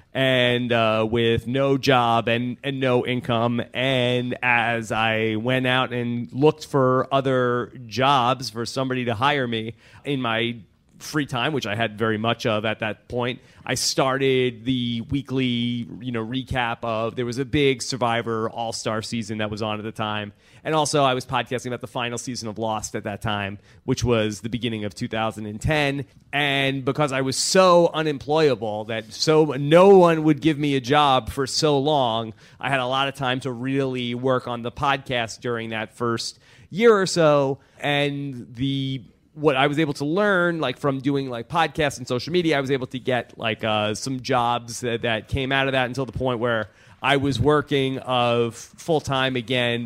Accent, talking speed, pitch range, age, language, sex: American, 190 wpm, 115-135 Hz, 30-49, English, male